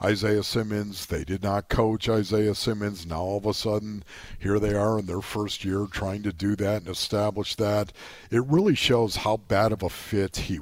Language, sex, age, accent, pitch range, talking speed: English, male, 50-69, American, 95-120 Hz, 205 wpm